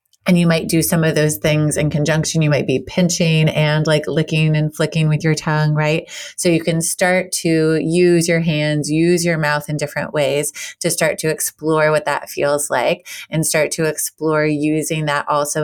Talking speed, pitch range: 200 wpm, 155-185 Hz